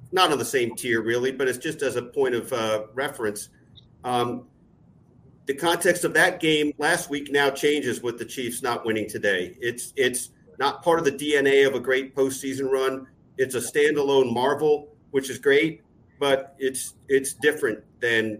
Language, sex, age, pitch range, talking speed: English, male, 50-69, 130-165 Hz, 180 wpm